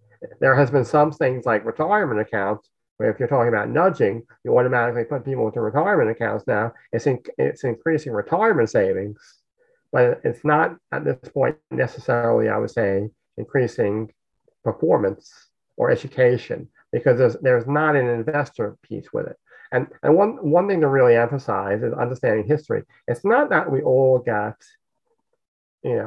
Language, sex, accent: English, male, American